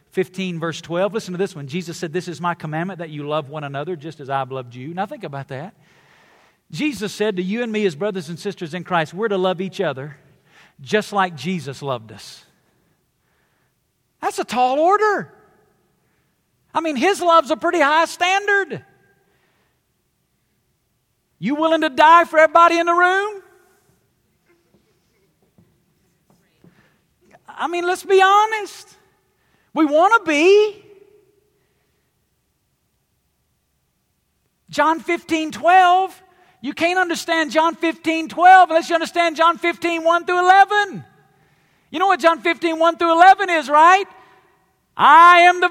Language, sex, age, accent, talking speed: English, male, 50-69, American, 145 wpm